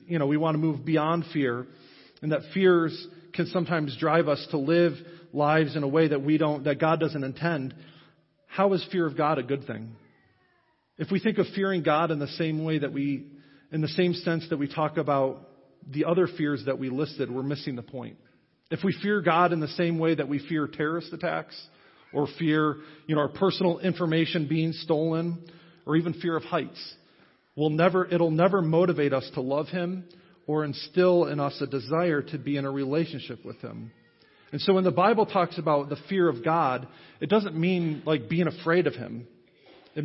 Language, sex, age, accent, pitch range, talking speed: English, male, 40-59, American, 140-170 Hz, 200 wpm